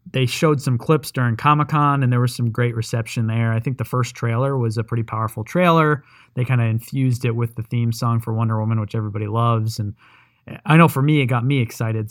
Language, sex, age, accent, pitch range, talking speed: English, male, 20-39, American, 115-130 Hz, 235 wpm